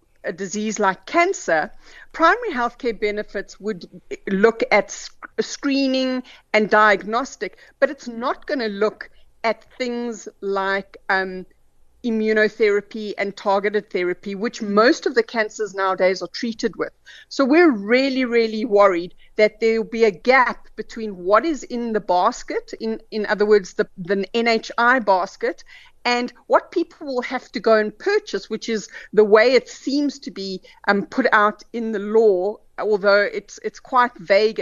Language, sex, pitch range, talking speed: English, female, 200-255 Hz, 150 wpm